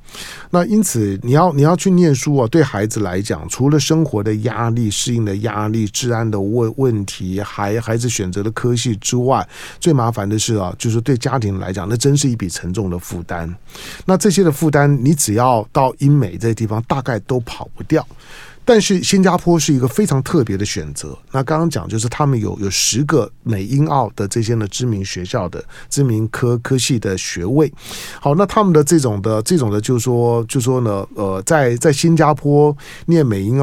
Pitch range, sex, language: 105-140 Hz, male, Chinese